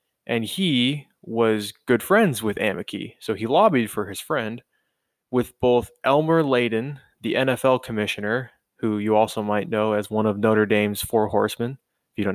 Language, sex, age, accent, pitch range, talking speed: English, male, 20-39, American, 105-125 Hz, 170 wpm